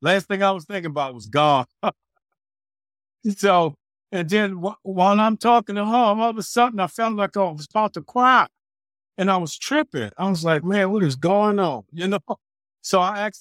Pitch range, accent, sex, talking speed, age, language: 140-195 Hz, American, male, 200 wpm, 50-69, English